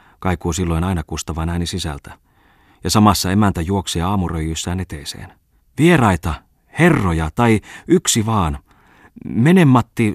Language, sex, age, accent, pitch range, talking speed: Finnish, male, 30-49, native, 80-100 Hz, 110 wpm